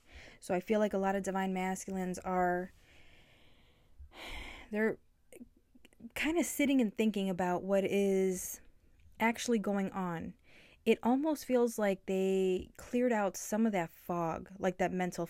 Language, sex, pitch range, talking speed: English, female, 180-215 Hz, 140 wpm